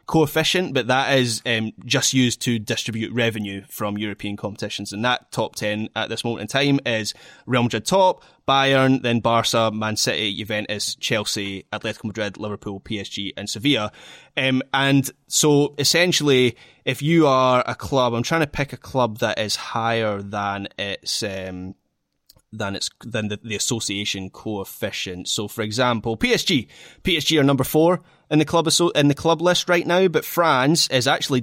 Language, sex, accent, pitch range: English, male, British, 110-135 Hz